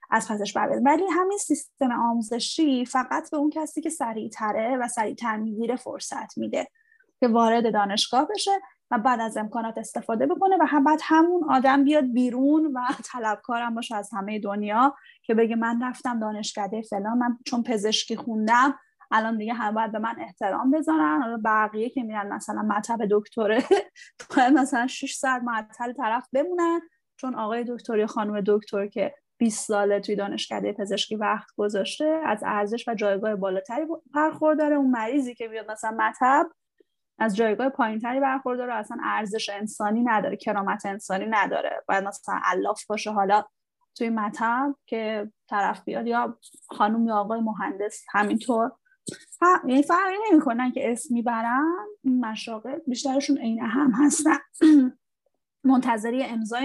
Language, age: Persian, 10-29